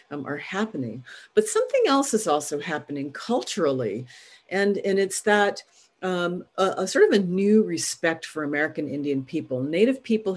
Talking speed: 160 wpm